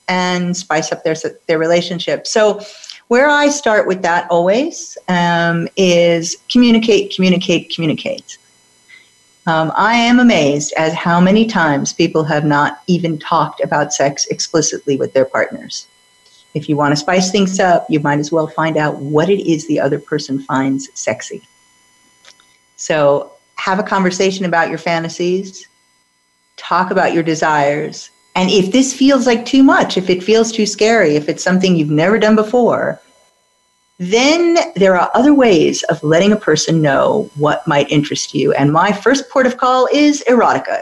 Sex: female